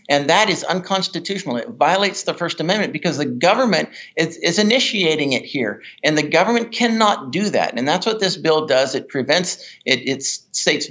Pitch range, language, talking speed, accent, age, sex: 135-190 Hz, English, 185 wpm, American, 50-69, male